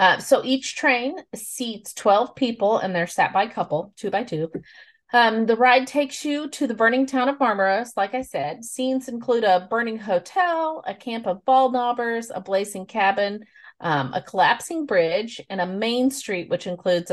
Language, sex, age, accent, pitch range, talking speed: English, female, 30-49, American, 170-245 Hz, 185 wpm